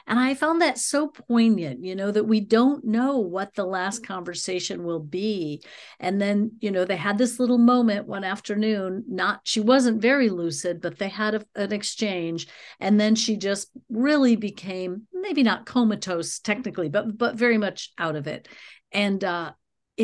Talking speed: 175 wpm